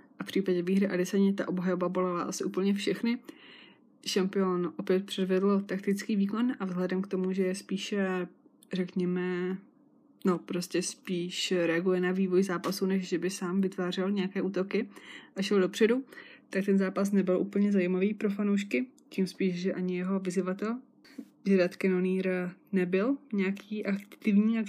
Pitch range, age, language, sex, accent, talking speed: 185-200 Hz, 20-39, Czech, female, native, 145 wpm